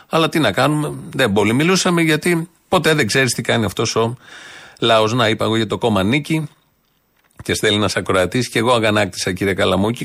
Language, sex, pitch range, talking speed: Greek, male, 115-165 Hz, 185 wpm